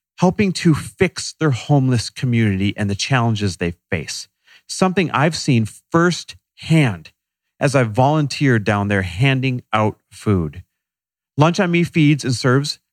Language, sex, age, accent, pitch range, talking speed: English, male, 40-59, American, 100-140 Hz, 135 wpm